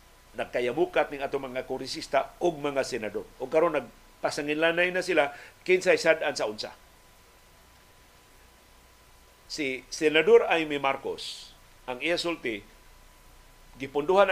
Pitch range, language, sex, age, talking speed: 120-155 Hz, Filipino, male, 50-69, 100 wpm